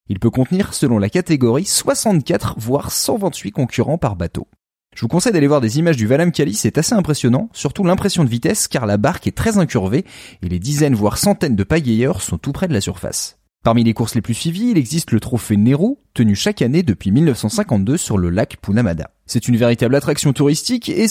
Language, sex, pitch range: French, male, 110-165 Hz